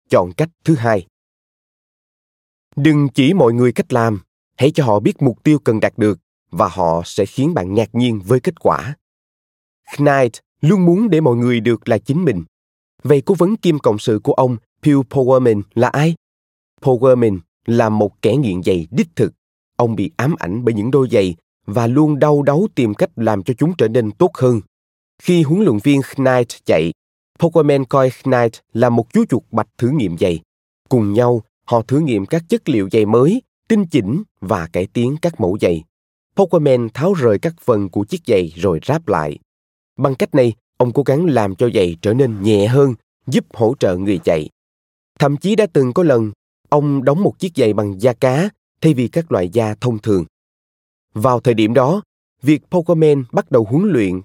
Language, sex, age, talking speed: Vietnamese, male, 20-39, 195 wpm